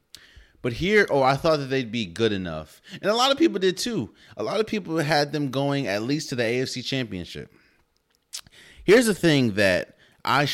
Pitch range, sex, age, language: 90-140 Hz, male, 30-49, English